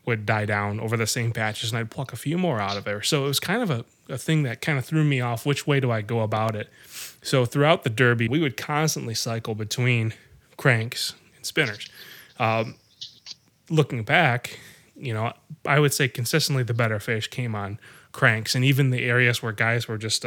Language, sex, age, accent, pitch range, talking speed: English, male, 20-39, American, 115-130 Hz, 215 wpm